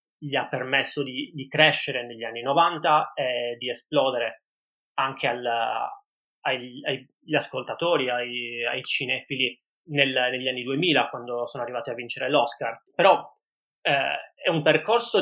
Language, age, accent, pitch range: Italian, 20-39, native, 125-150 Hz